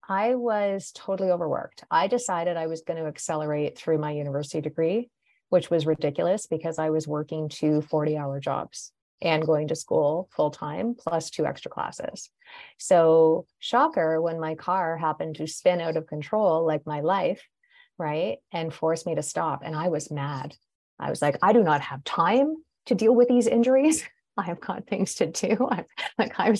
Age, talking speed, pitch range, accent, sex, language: 30-49, 180 wpm, 155-190 Hz, American, female, English